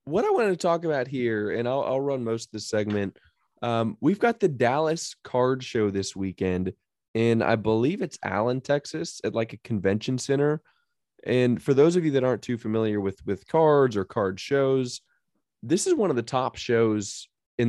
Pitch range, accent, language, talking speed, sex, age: 100-130 Hz, American, English, 195 wpm, male, 20-39